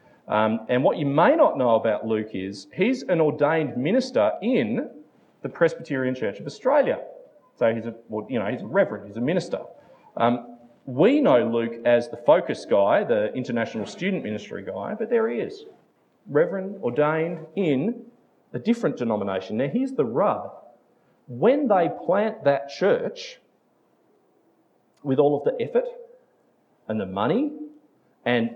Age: 40-59